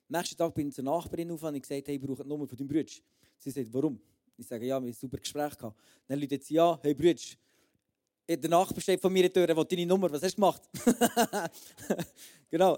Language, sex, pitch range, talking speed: German, male, 140-170 Hz, 235 wpm